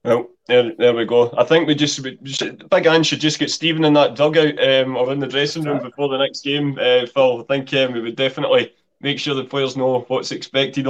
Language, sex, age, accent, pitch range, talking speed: English, male, 20-39, British, 120-180 Hz, 255 wpm